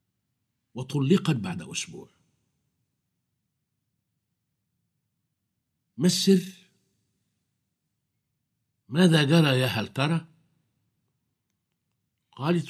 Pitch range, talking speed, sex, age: 120-165 Hz, 45 wpm, male, 60-79